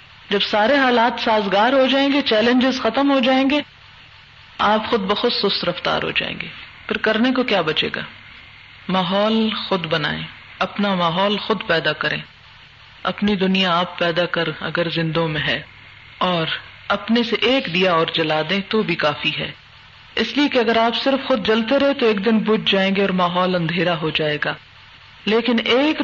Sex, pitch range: female, 170-255 Hz